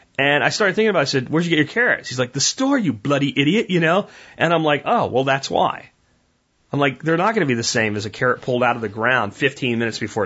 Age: 30-49